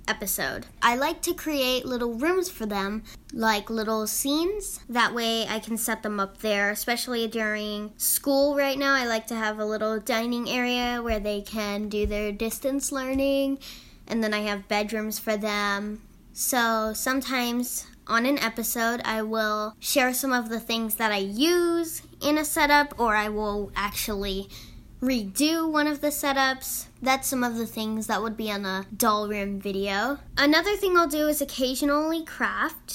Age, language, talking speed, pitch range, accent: 10-29, English, 170 wpm, 210-265 Hz, American